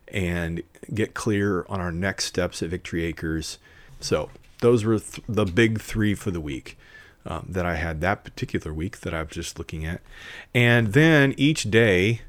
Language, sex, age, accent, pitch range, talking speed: English, male, 30-49, American, 90-115 Hz, 170 wpm